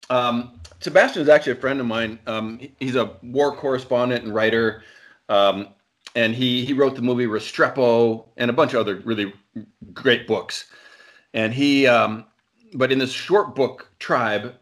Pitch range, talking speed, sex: 105-130 Hz, 165 wpm, male